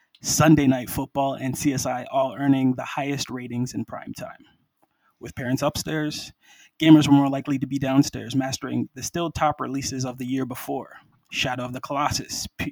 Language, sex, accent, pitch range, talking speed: English, male, American, 130-150 Hz, 170 wpm